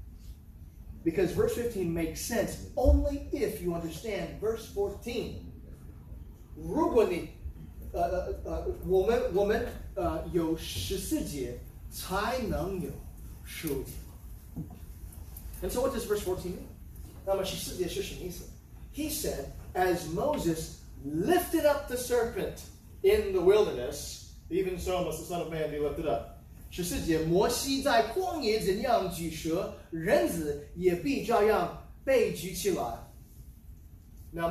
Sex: male